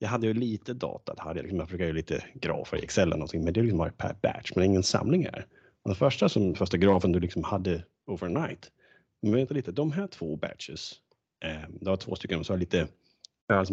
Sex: male